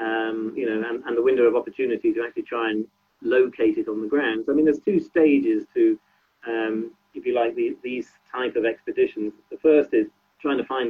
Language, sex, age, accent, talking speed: English, male, 40-59, British, 220 wpm